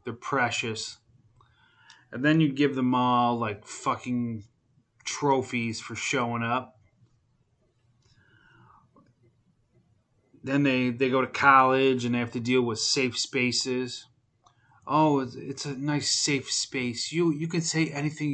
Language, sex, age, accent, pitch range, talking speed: English, male, 30-49, American, 120-140 Hz, 130 wpm